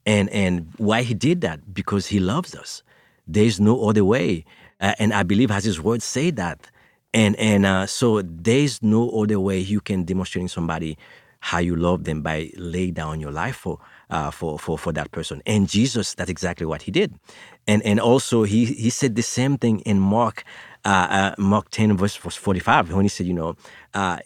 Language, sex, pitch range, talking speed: English, male, 90-115 Hz, 205 wpm